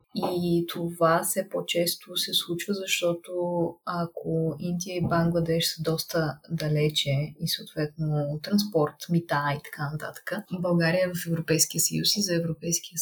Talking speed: 130 wpm